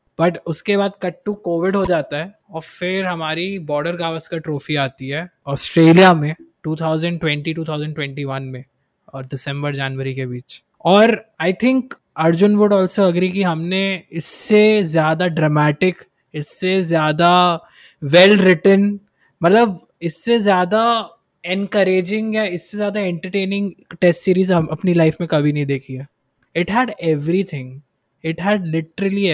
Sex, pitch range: male, 150-190 Hz